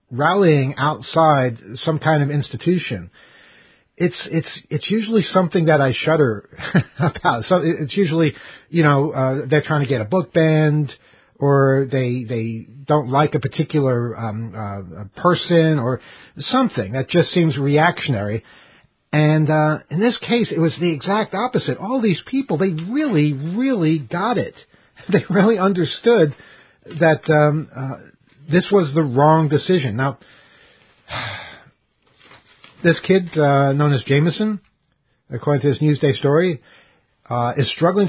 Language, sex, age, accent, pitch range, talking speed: English, male, 50-69, American, 135-170 Hz, 140 wpm